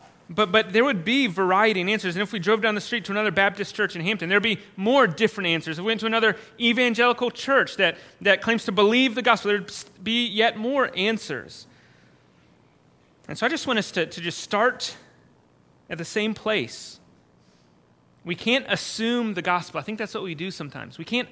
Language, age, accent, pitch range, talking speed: English, 30-49, American, 175-230 Hz, 210 wpm